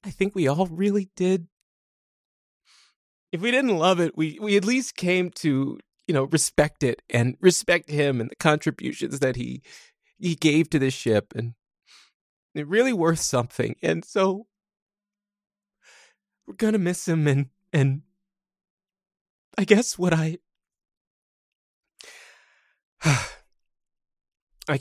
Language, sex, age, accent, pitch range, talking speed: English, male, 30-49, American, 140-210 Hz, 130 wpm